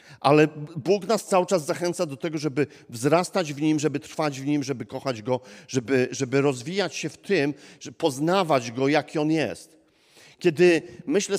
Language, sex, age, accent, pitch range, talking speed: Polish, male, 40-59, native, 140-175 Hz, 175 wpm